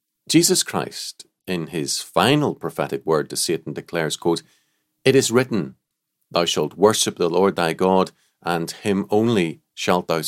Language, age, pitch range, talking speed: English, 40-59, 80-100 Hz, 150 wpm